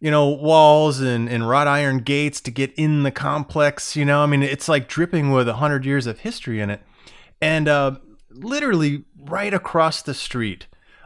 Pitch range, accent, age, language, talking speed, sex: 125-165 Hz, American, 30-49, English, 190 wpm, male